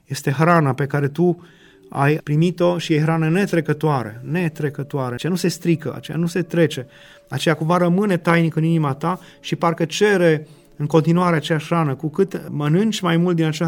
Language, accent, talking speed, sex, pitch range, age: Romanian, native, 180 wpm, male, 145-170 Hz, 30-49